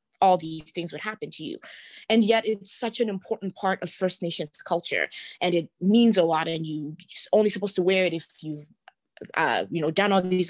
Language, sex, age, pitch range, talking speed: English, female, 20-39, 170-220 Hz, 215 wpm